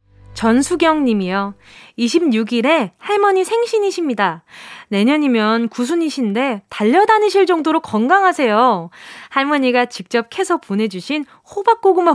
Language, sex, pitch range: Korean, female, 220-315 Hz